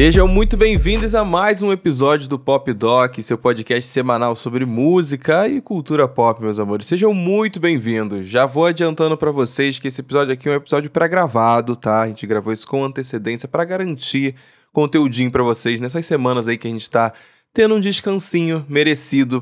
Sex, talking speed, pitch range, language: male, 180 wpm, 120-160 Hz, Portuguese